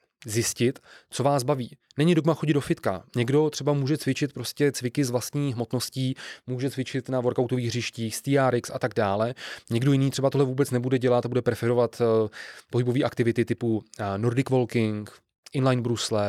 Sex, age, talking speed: male, 20-39, 165 wpm